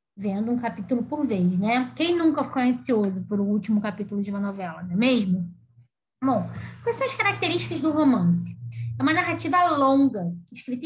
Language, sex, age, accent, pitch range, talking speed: Portuguese, female, 20-39, Brazilian, 215-320 Hz, 180 wpm